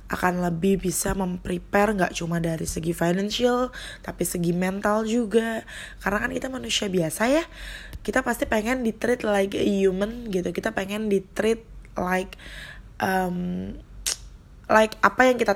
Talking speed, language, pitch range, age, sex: 145 wpm, Indonesian, 175-220 Hz, 20-39, female